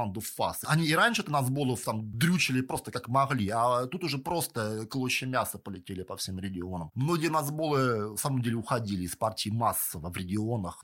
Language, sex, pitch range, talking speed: Russian, male, 120-160 Hz, 165 wpm